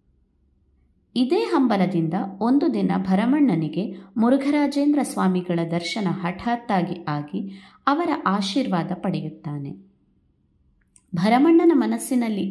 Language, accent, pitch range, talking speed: Kannada, native, 165-240 Hz, 70 wpm